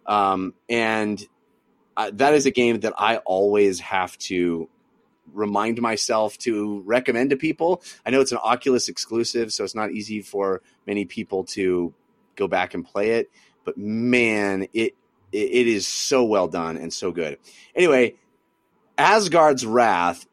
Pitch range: 100-130 Hz